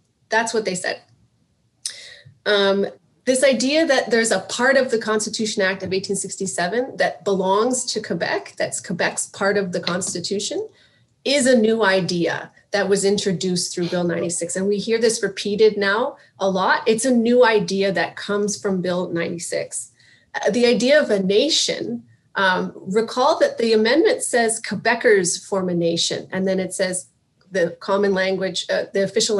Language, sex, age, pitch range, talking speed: English, female, 30-49, 185-225 Hz, 165 wpm